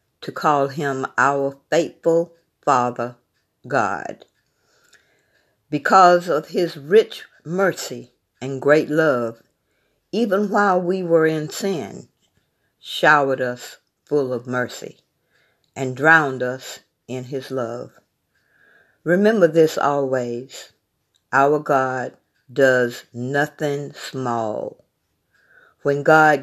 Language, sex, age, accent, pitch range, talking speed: English, female, 50-69, American, 125-155 Hz, 95 wpm